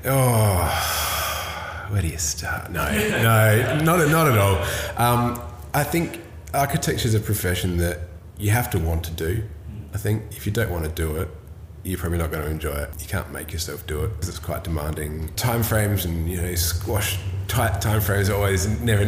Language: English